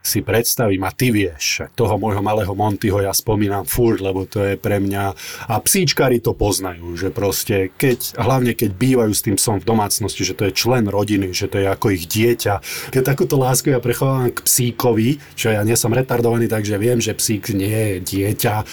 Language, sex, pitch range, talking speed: Slovak, male, 105-125 Hz, 200 wpm